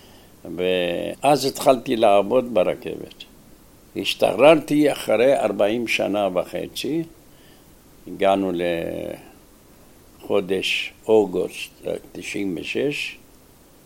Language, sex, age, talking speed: Hebrew, male, 60-79, 55 wpm